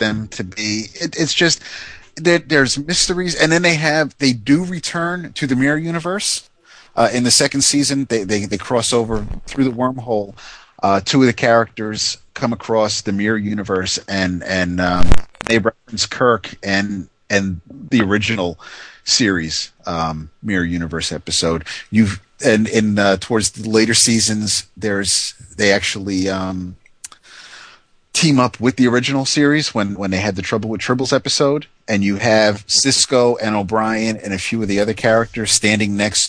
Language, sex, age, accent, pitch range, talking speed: English, male, 30-49, American, 100-125 Hz, 165 wpm